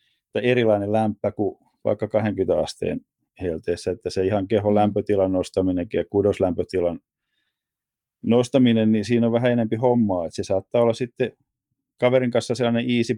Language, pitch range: Finnish, 95-120 Hz